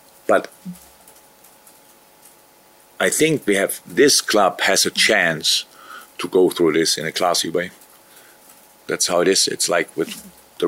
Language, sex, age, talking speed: English, male, 50-69, 145 wpm